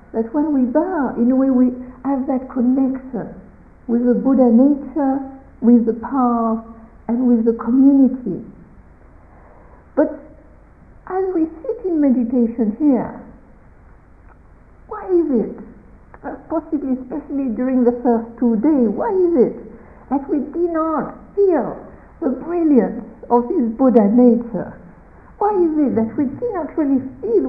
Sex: female